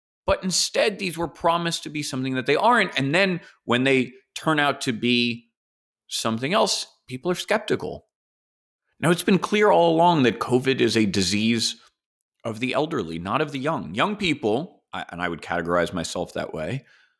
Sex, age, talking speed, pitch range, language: male, 30-49, 180 wpm, 110-175 Hz, English